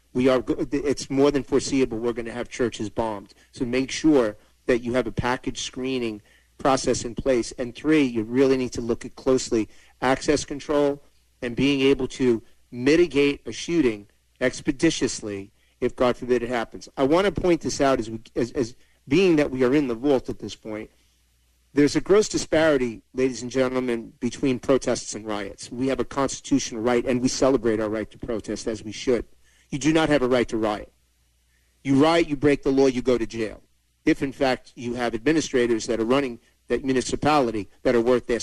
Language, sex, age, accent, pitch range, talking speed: English, male, 40-59, American, 115-145 Hz, 200 wpm